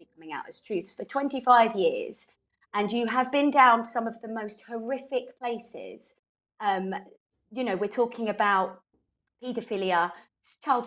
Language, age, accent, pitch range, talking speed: English, 30-49, British, 195-265 Hz, 140 wpm